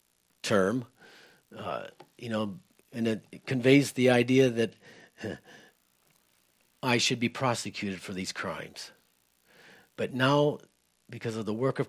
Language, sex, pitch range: English, male, 110-140 Hz